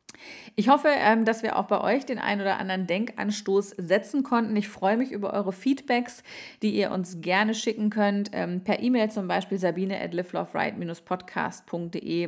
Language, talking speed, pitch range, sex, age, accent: German, 150 wpm, 180-215 Hz, female, 30-49, German